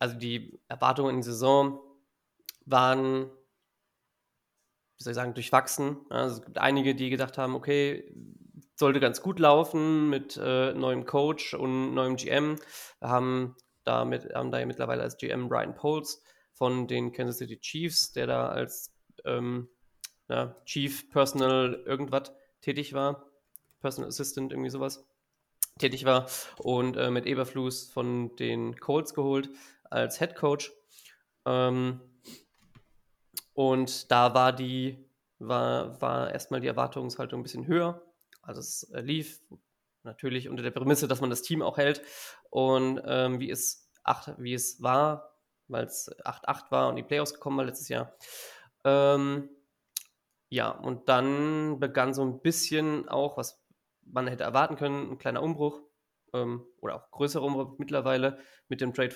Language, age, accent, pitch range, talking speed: German, 20-39, German, 125-145 Hz, 145 wpm